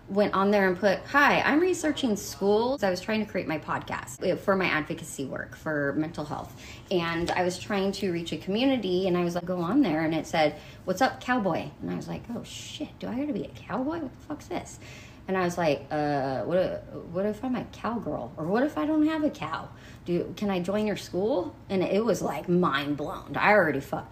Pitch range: 160-220 Hz